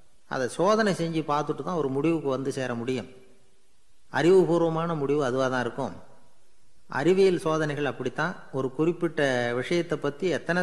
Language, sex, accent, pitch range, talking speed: Tamil, male, native, 125-155 Hz, 130 wpm